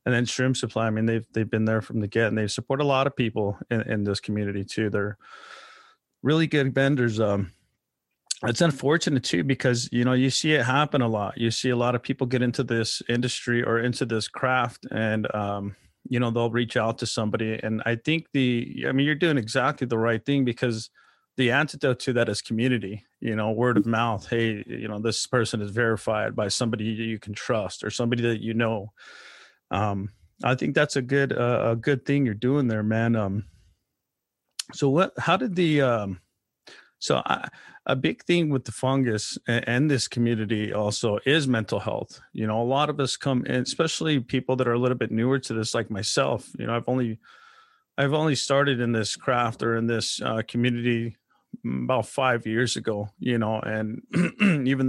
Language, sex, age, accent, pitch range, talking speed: English, male, 30-49, American, 110-130 Hz, 205 wpm